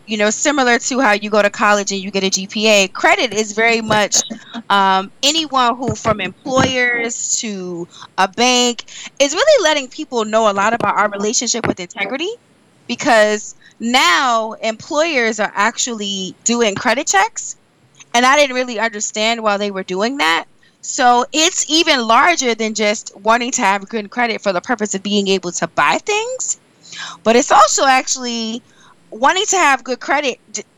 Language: English